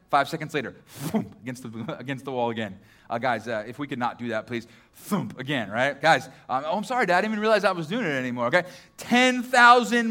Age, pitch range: 30-49, 140-220 Hz